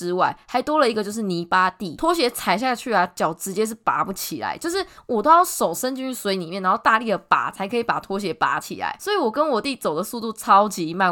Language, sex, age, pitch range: Chinese, female, 20-39, 180-255 Hz